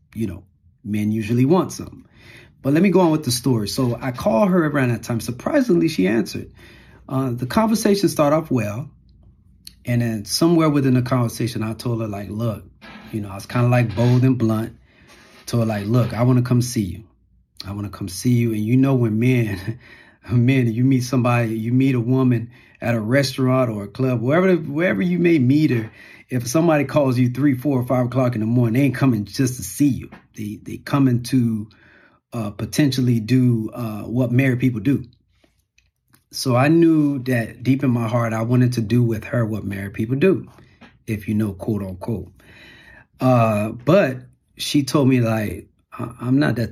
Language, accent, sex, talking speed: English, American, male, 200 wpm